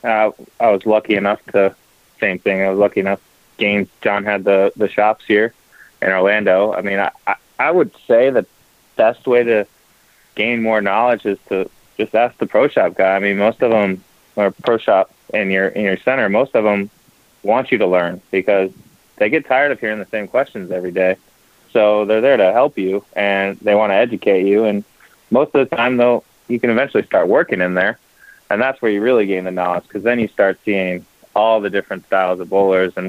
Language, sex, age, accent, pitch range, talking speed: English, male, 20-39, American, 95-110 Hz, 225 wpm